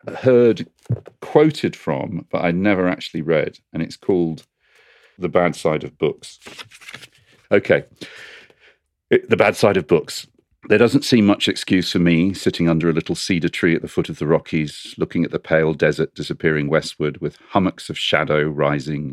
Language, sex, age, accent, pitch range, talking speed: English, male, 40-59, British, 75-95 Hz, 165 wpm